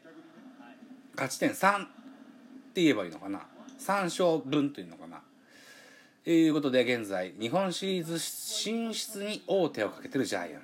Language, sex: Japanese, male